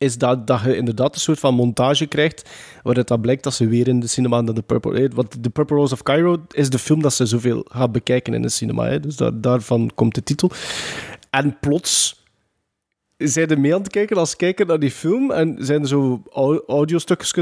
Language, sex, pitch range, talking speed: Dutch, male, 125-175 Hz, 220 wpm